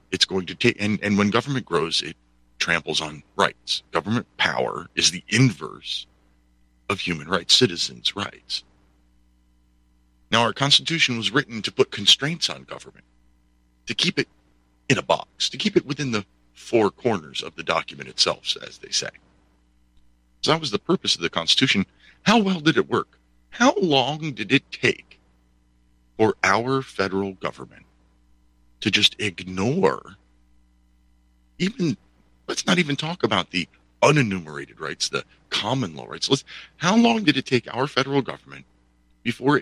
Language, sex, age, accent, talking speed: English, male, 50-69, American, 150 wpm